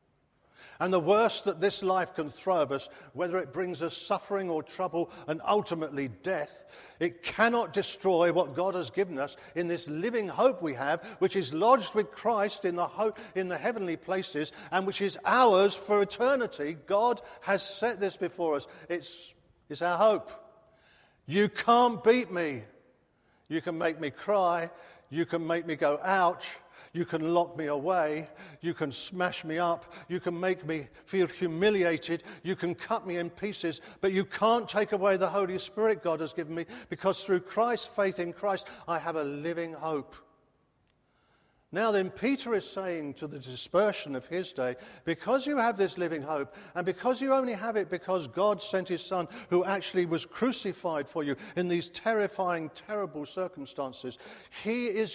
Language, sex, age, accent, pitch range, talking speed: English, male, 50-69, British, 165-200 Hz, 175 wpm